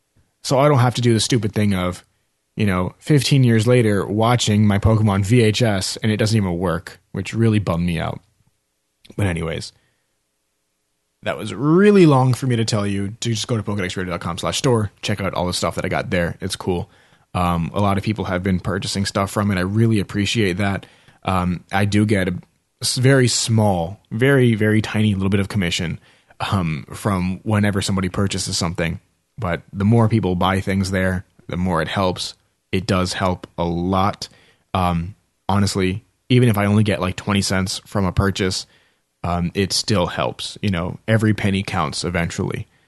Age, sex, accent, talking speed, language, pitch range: 30-49, male, American, 185 wpm, English, 90-115 Hz